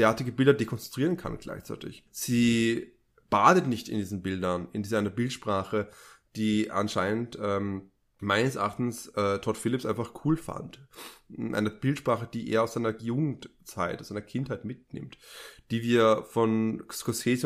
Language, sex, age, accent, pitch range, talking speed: German, male, 20-39, German, 110-135 Hz, 140 wpm